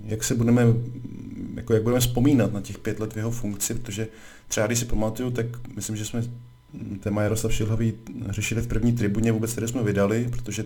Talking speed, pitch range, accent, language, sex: 195 wpm, 100-110 Hz, native, Czech, male